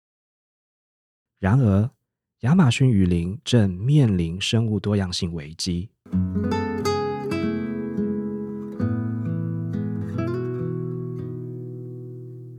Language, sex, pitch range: Chinese, male, 95-125 Hz